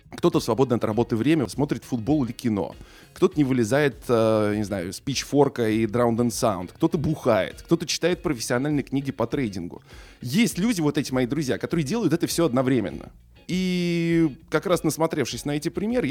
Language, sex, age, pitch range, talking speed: Russian, male, 20-39, 110-145 Hz, 165 wpm